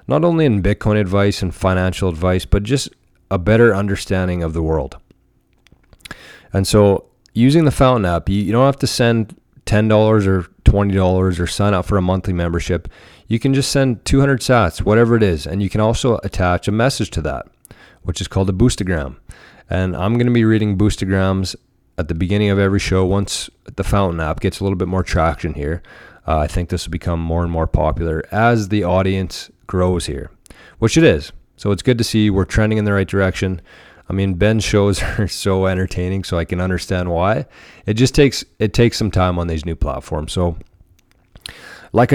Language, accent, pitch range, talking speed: English, American, 90-105 Hz, 195 wpm